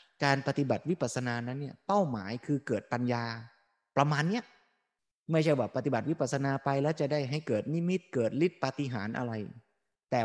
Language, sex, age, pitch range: Thai, male, 20-39, 115-150 Hz